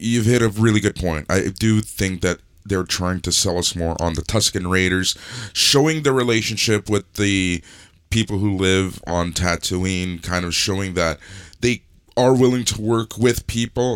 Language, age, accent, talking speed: English, 20-39, American, 175 wpm